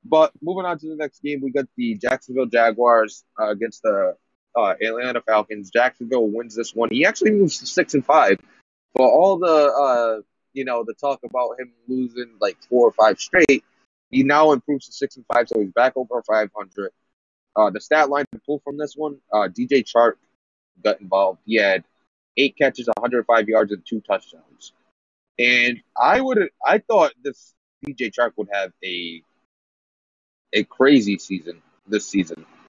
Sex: male